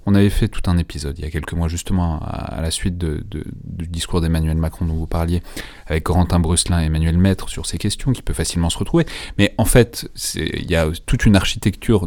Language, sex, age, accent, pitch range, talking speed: French, male, 30-49, French, 80-100 Hz, 240 wpm